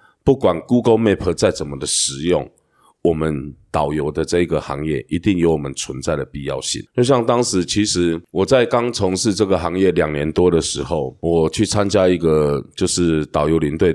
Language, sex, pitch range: Chinese, male, 75-95 Hz